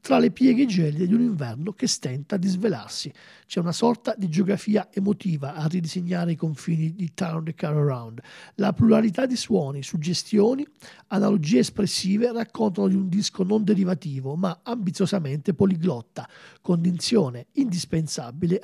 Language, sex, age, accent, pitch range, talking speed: Italian, male, 40-59, native, 165-215 Hz, 140 wpm